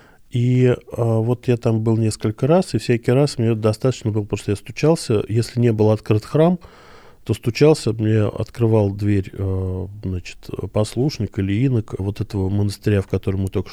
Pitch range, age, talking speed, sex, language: 100-125 Hz, 20-39, 170 wpm, male, Russian